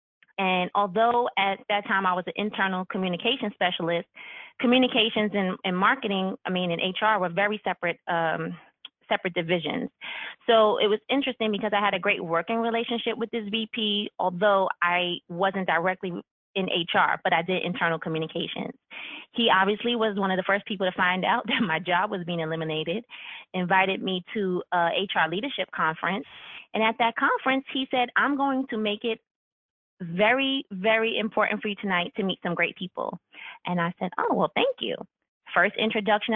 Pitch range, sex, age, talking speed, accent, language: 185-230 Hz, female, 20-39, 175 wpm, American, English